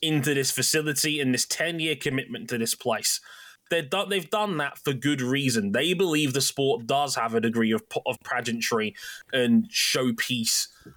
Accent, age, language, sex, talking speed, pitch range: British, 20-39, English, male, 170 wpm, 125-185 Hz